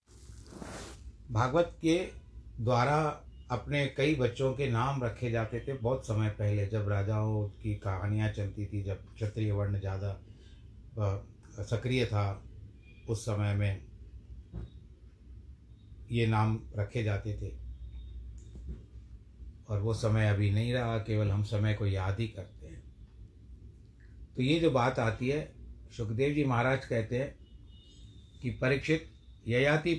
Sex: male